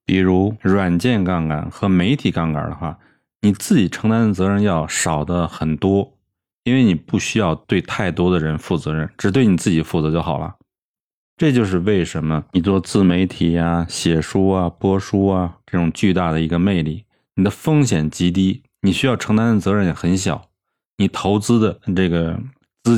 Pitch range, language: 85-110 Hz, Chinese